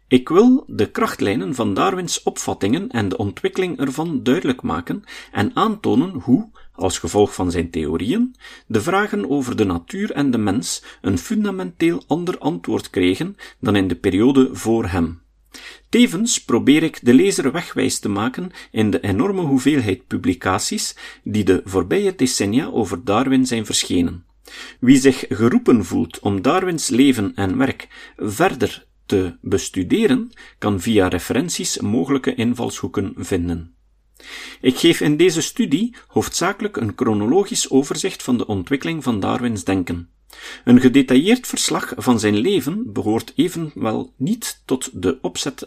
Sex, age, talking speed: male, 40-59, 140 wpm